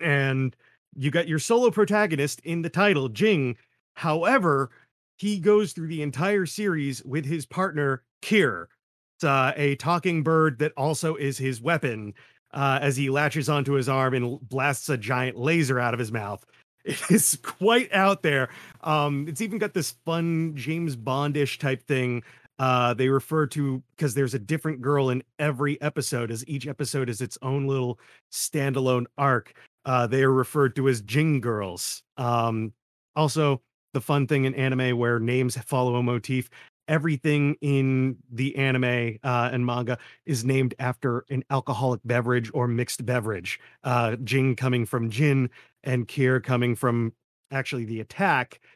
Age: 30-49